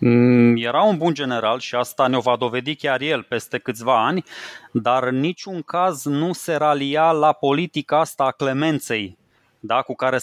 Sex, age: male, 20-39